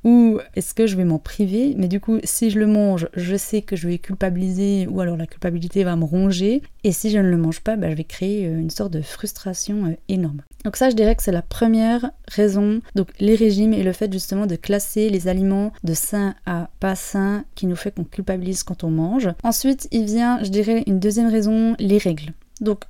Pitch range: 185-215 Hz